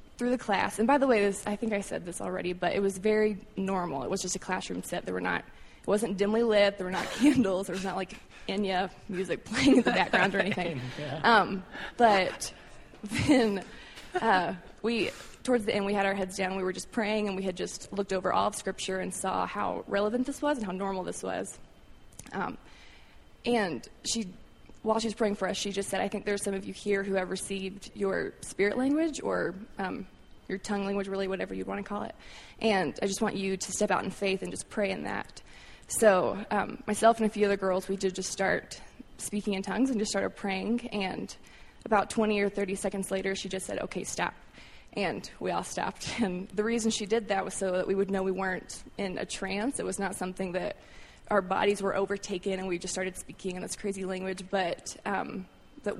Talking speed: 225 wpm